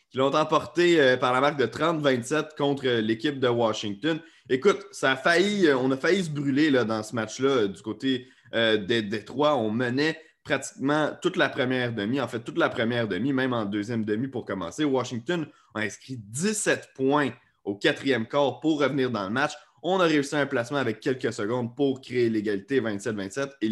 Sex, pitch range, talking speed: male, 105-140 Hz, 190 wpm